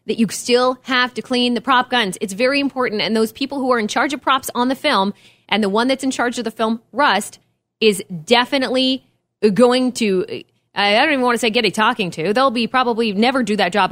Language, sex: English, female